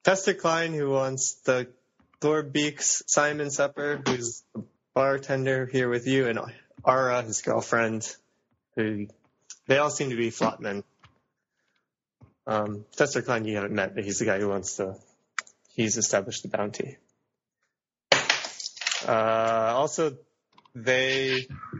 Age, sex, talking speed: 20-39, male, 125 wpm